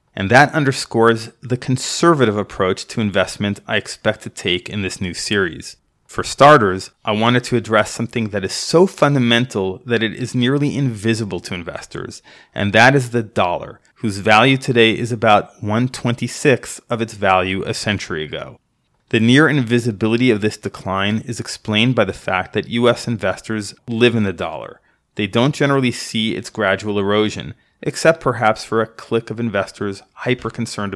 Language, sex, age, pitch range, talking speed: English, male, 30-49, 100-125 Hz, 165 wpm